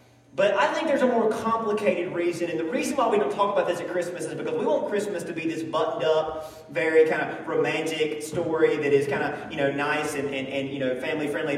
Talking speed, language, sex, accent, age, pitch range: 240 wpm, English, male, American, 30-49, 155-240 Hz